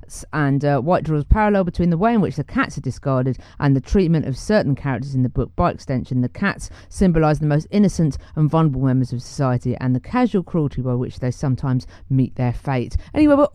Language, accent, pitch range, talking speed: English, British, 135-195 Hz, 215 wpm